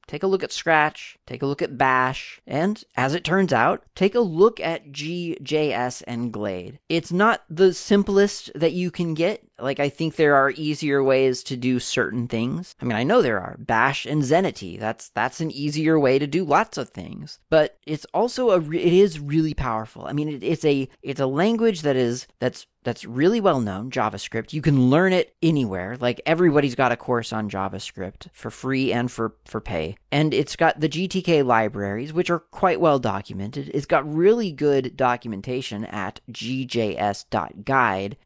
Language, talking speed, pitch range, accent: English, 185 wpm, 120-165 Hz, American